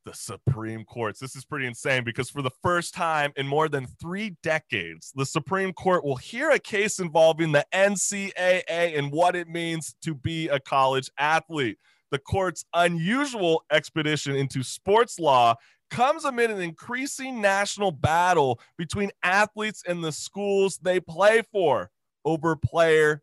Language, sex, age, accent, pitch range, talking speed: English, male, 30-49, American, 145-195 Hz, 150 wpm